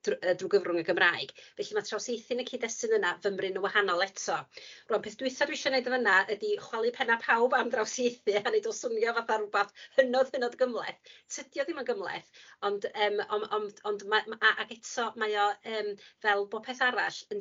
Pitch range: 195-255 Hz